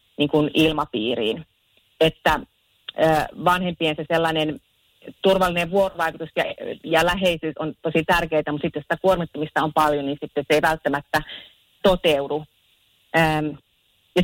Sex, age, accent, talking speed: female, 30-49, native, 115 wpm